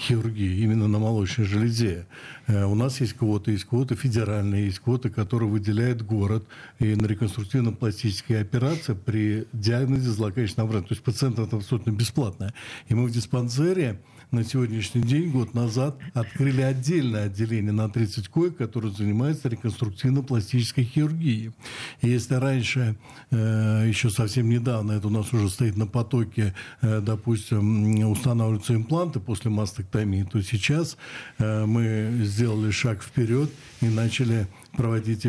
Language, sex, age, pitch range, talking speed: Russian, male, 60-79, 110-125 Hz, 130 wpm